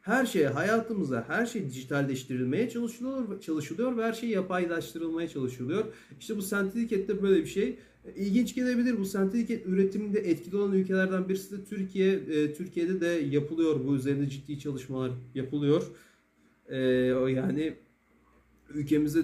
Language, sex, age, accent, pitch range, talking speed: Turkish, male, 40-59, native, 135-180 Hz, 135 wpm